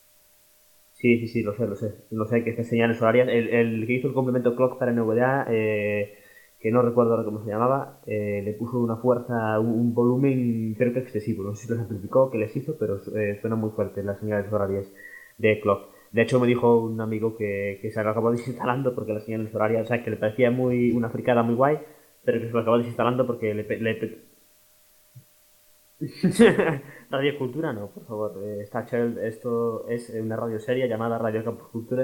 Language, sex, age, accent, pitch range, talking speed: Spanish, male, 20-39, Spanish, 105-125 Hz, 210 wpm